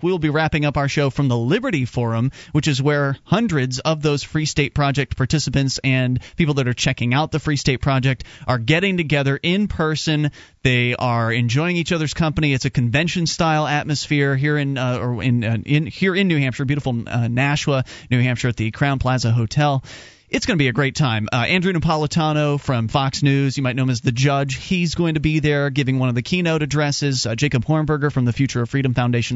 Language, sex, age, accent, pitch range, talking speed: English, male, 30-49, American, 125-155 Hz, 215 wpm